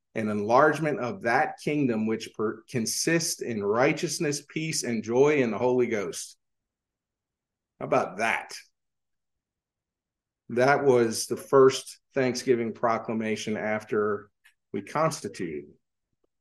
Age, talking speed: 40-59, 105 wpm